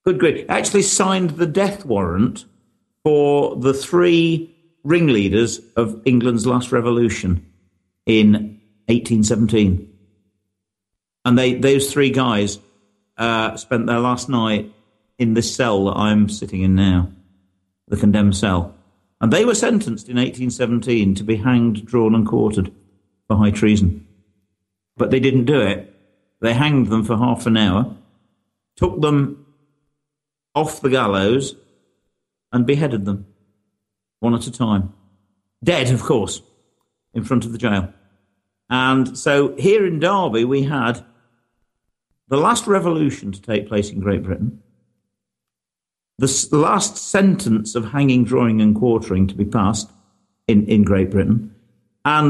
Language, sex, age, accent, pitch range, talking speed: English, male, 50-69, British, 100-135 Hz, 135 wpm